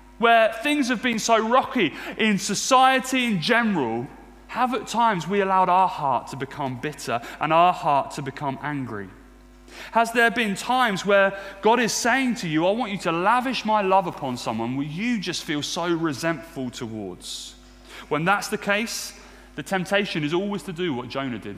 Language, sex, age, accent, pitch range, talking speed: English, male, 30-49, British, 135-200 Hz, 180 wpm